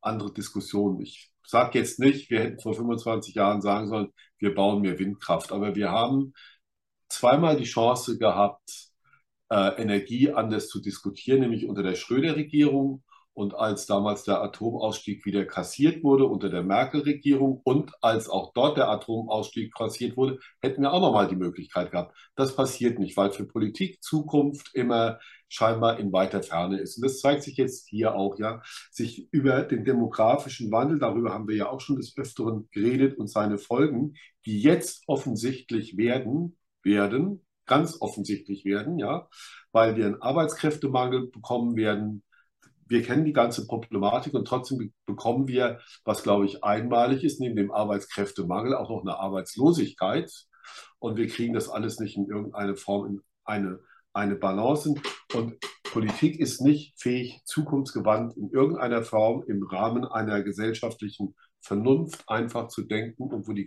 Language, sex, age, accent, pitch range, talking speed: German, male, 50-69, German, 100-130 Hz, 155 wpm